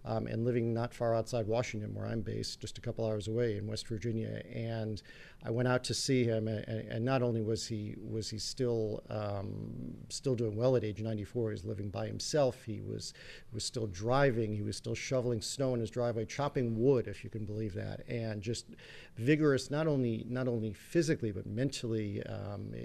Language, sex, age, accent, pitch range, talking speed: English, male, 50-69, American, 110-120 Hz, 205 wpm